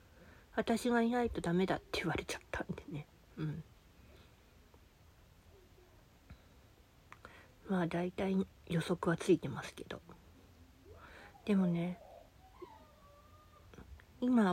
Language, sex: Japanese, female